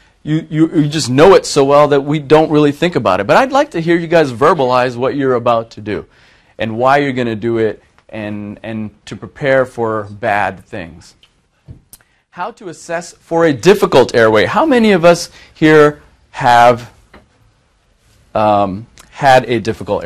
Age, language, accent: 30-49, English, American